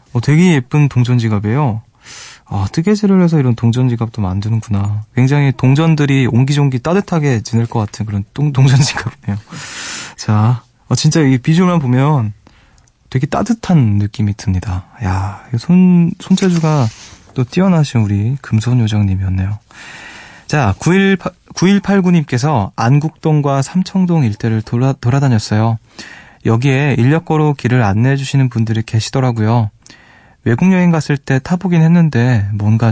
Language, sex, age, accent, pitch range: Korean, male, 20-39, native, 115-155 Hz